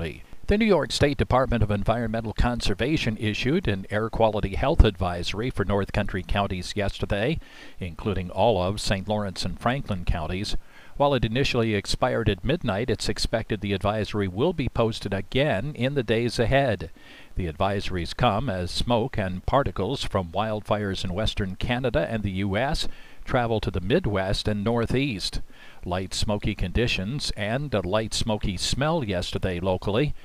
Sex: male